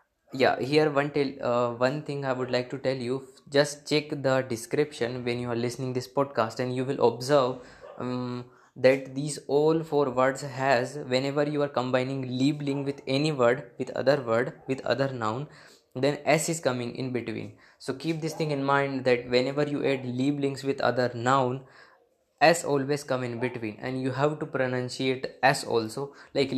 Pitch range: 125-145 Hz